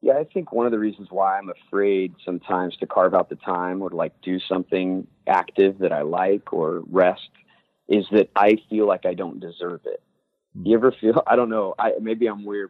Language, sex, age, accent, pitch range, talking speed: English, male, 30-49, American, 90-115 Hz, 215 wpm